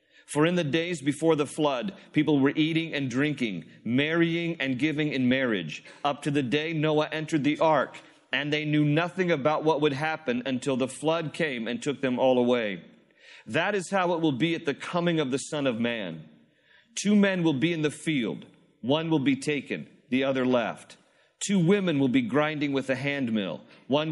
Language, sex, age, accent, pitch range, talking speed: English, male, 40-59, American, 140-185 Hz, 195 wpm